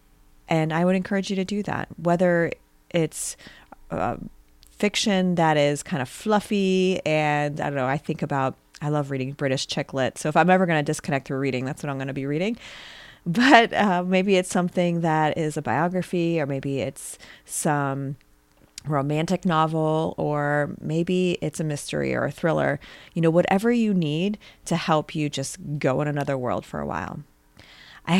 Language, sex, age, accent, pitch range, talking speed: English, female, 30-49, American, 145-180 Hz, 180 wpm